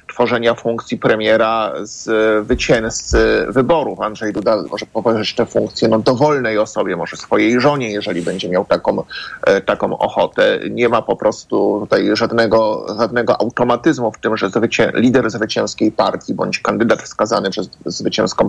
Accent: native